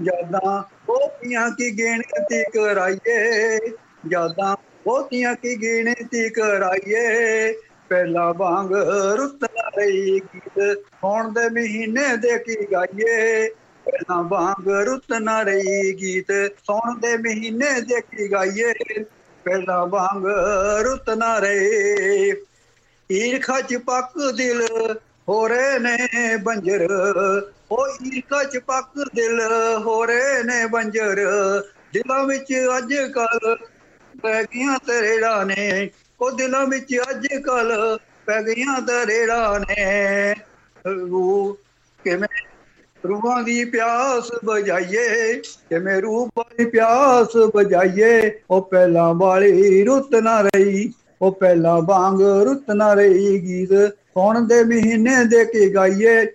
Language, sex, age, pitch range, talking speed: Punjabi, male, 50-69, 195-245 Hz, 100 wpm